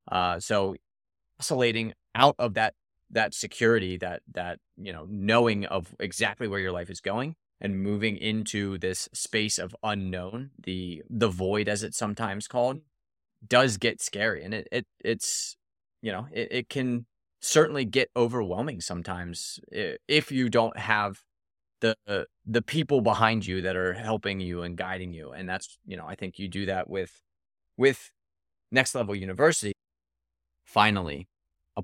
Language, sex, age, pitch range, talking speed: English, male, 20-39, 90-125 Hz, 155 wpm